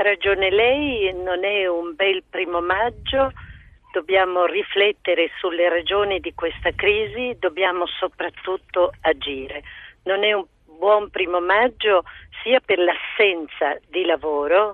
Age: 50-69